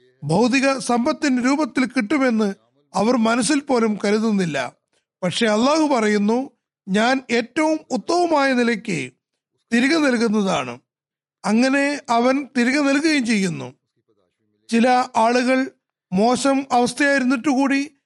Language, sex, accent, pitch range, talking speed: Malayalam, male, native, 210-275 Hz, 85 wpm